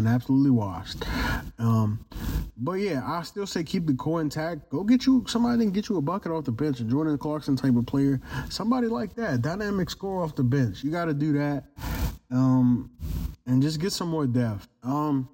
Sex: male